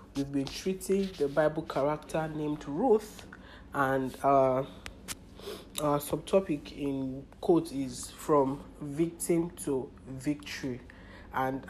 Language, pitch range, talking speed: English, 125-155 Hz, 110 wpm